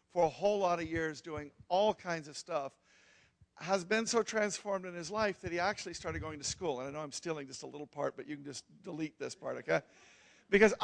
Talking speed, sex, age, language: 240 wpm, male, 50-69, English